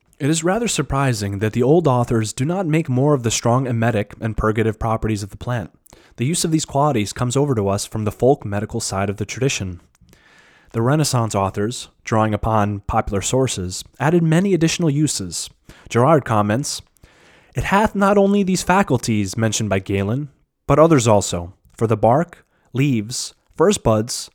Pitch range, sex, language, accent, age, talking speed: 110-145 Hz, male, English, American, 30-49, 175 wpm